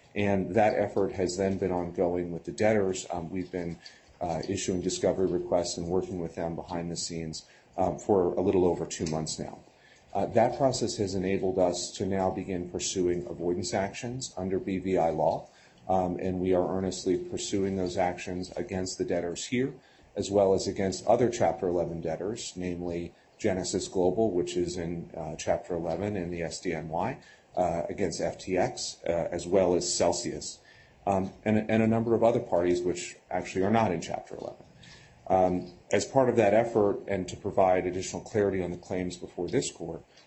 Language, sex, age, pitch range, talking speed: English, male, 40-59, 85-100 Hz, 175 wpm